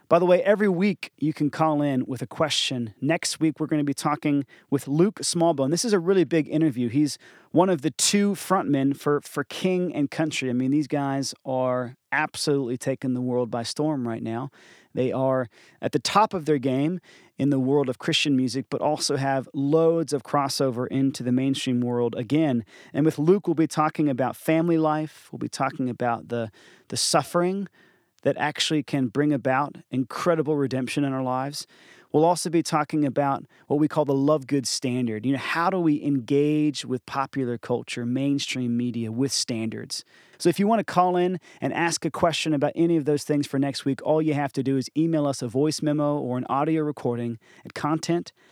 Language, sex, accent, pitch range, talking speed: English, male, American, 130-160 Hz, 205 wpm